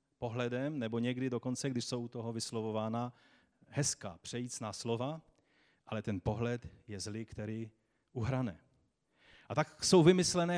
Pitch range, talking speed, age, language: 115-150 Hz, 130 wpm, 40-59, Czech